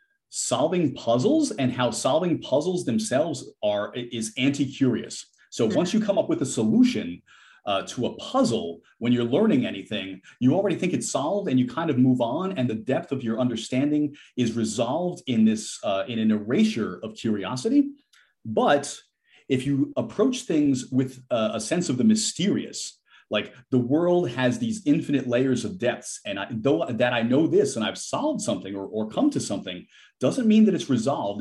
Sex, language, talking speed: male, English, 180 wpm